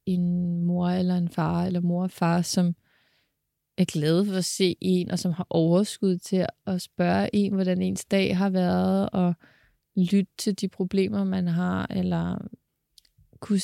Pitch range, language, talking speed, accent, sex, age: 175-210 Hz, Danish, 165 wpm, native, female, 20-39